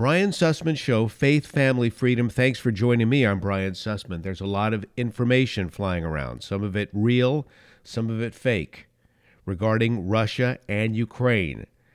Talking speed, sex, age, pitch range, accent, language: 160 wpm, male, 50-69, 100-125 Hz, American, English